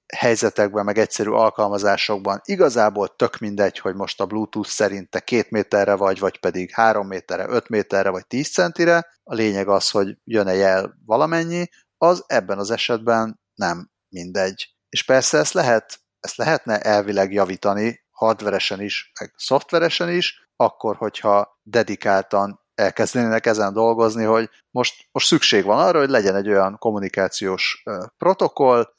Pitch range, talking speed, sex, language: 100-135 Hz, 145 wpm, male, Hungarian